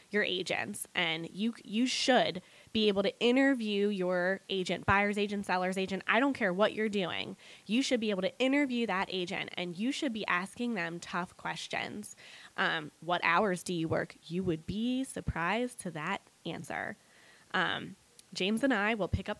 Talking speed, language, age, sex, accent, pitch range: 180 wpm, English, 10-29, female, American, 175-215 Hz